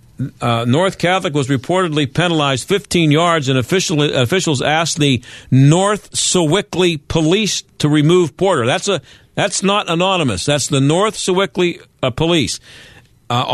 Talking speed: 135 wpm